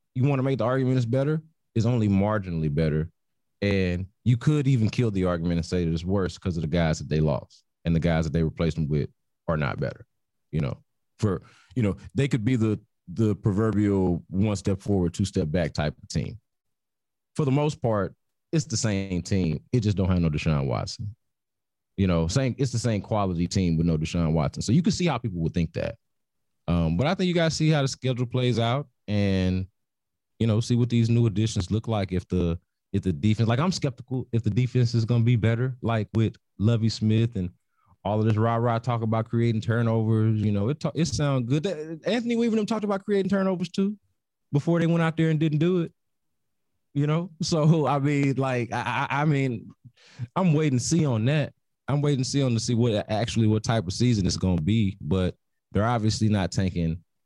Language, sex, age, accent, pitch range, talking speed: English, male, 30-49, American, 95-135 Hz, 220 wpm